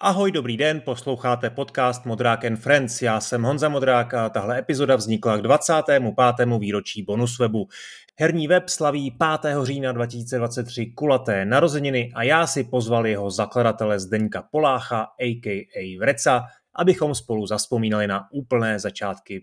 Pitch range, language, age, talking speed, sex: 110-135 Hz, Czech, 30-49, 135 wpm, male